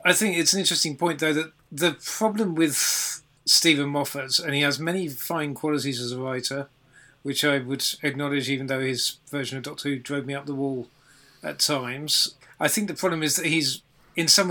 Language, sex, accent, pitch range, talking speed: English, male, British, 140-155 Hz, 205 wpm